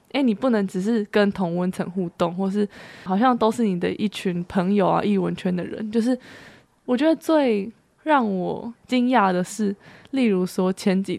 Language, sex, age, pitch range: Chinese, female, 20-39, 190-240 Hz